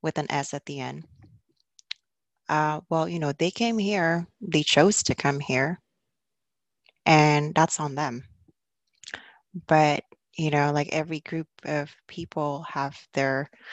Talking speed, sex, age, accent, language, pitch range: 140 wpm, female, 20-39, American, English, 150-190 Hz